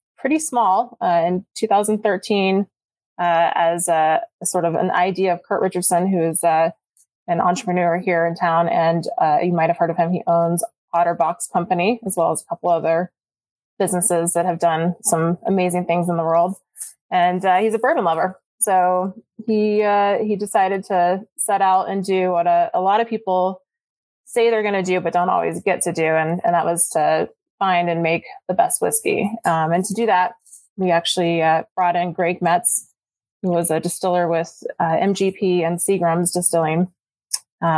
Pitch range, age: 170-195 Hz, 20-39